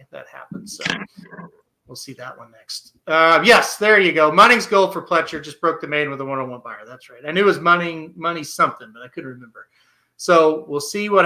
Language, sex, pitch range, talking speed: English, male, 145-185 Hz, 225 wpm